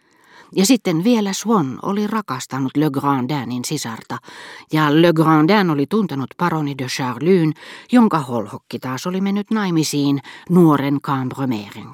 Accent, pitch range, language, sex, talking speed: native, 125-170 Hz, Finnish, female, 125 wpm